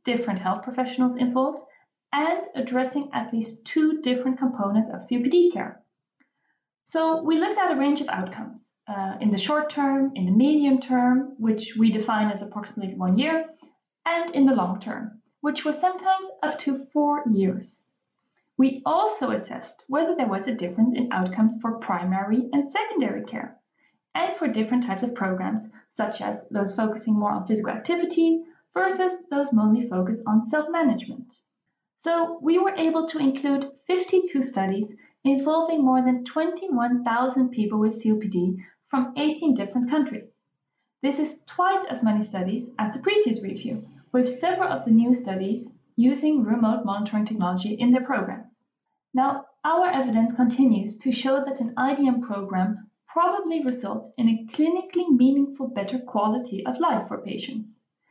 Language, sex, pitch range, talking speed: English, female, 220-300 Hz, 150 wpm